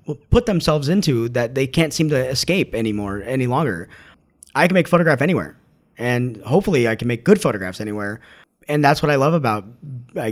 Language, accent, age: English, American, 30-49